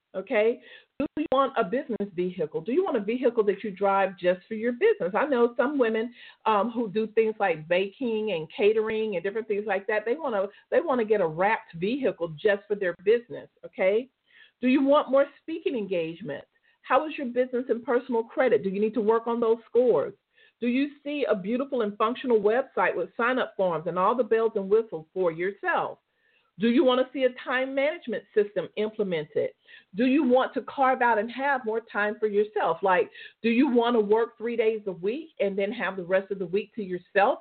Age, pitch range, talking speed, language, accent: 50-69, 210-275 Hz, 210 wpm, English, American